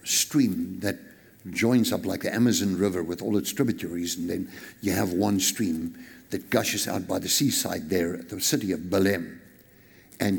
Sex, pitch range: male, 95-125 Hz